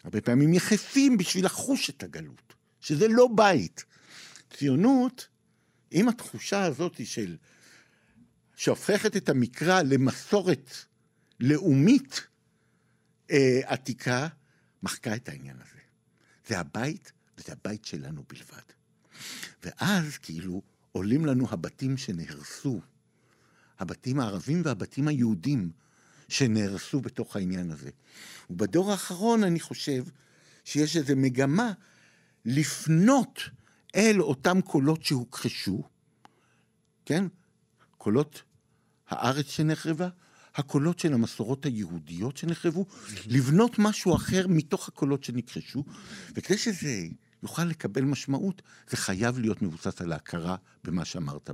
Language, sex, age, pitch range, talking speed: Hebrew, male, 60-79, 125-185 Hz, 100 wpm